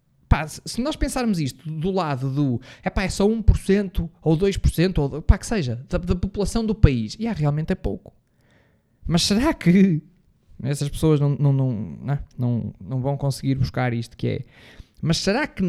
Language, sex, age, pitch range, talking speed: Portuguese, male, 20-39, 140-190 Hz, 180 wpm